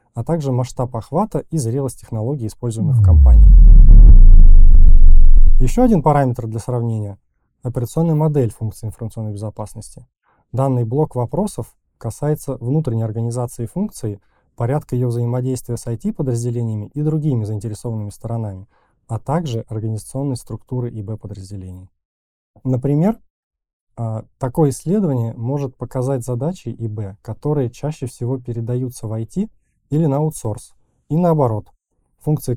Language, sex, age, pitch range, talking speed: Russian, male, 20-39, 110-140 Hz, 110 wpm